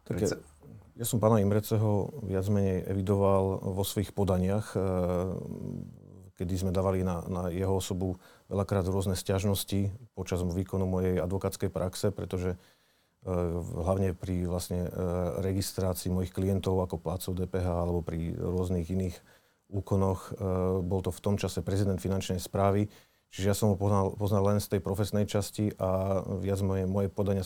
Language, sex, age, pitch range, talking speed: Slovak, male, 40-59, 90-100 Hz, 140 wpm